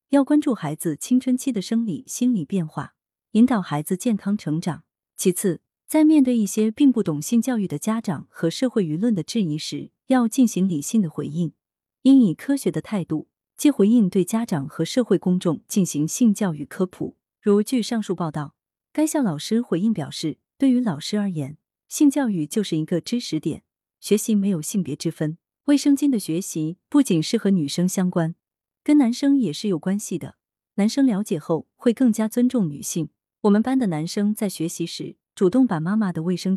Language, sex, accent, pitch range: Chinese, female, native, 160-230 Hz